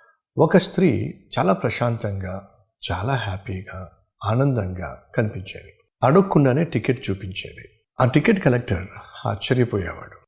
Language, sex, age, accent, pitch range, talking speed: Telugu, male, 50-69, native, 105-145 Hz, 90 wpm